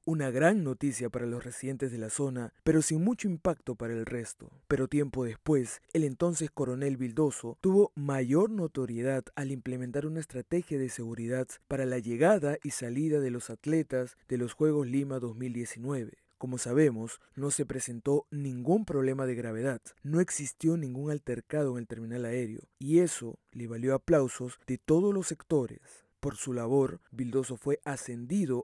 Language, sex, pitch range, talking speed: Spanish, male, 120-150 Hz, 160 wpm